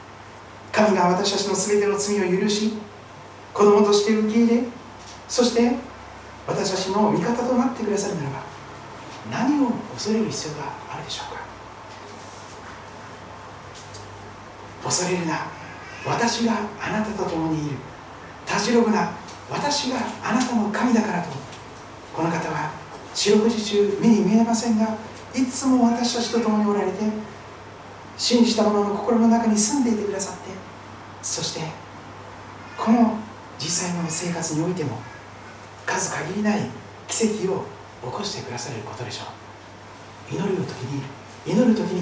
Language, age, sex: Japanese, 40-59, male